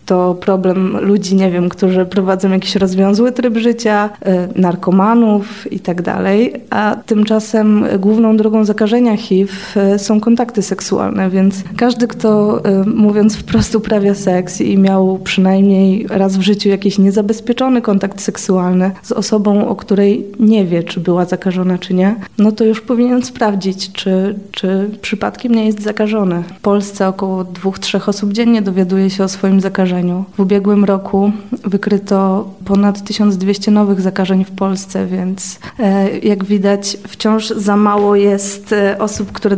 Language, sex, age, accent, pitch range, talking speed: Polish, female, 20-39, native, 195-220 Hz, 145 wpm